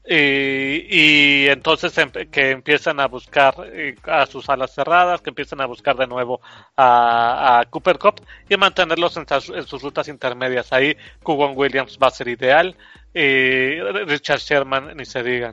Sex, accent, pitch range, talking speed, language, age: male, Mexican, 130-155 Hz, 160 wpm, Spanish, 30-49